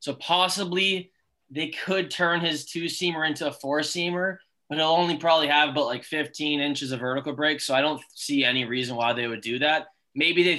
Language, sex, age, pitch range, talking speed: English, male, 10-29, 140-175 Hz, 200 wpm